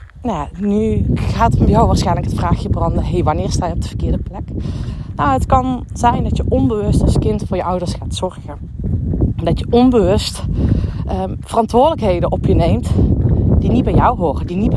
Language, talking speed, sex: Dutch, 185 wpm, female